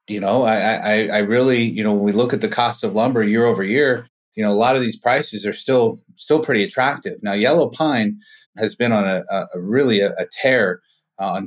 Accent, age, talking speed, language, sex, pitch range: American, 30-49, 235 wpm, English, male, 105-130 Hz